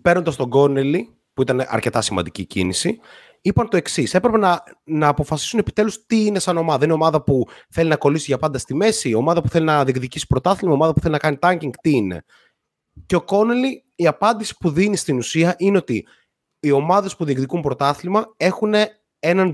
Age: 30-49